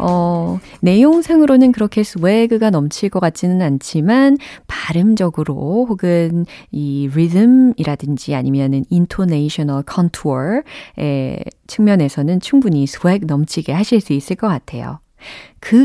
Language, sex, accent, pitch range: Korean, female, native, 155-245 Hz